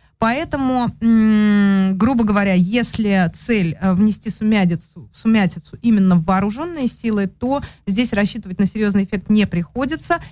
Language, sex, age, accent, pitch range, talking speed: Russian, female, 30-49, native, 185-225 Hz, 115 wpm